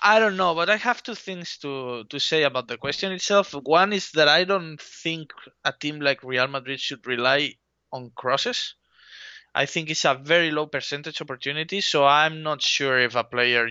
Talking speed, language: 195 wpm, English